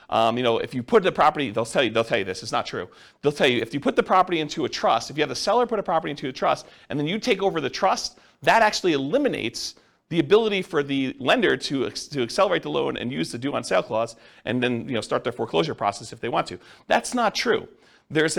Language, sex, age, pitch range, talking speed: English, male, 40-59, 125-205 Hz, 270 wpm